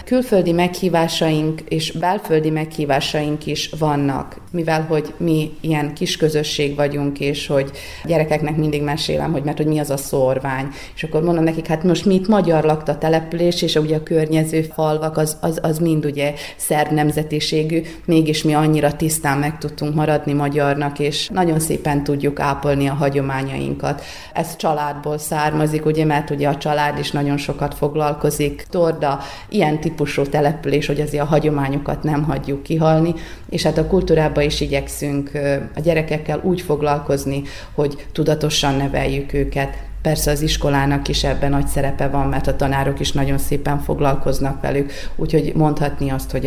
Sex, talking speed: female, 150 wpm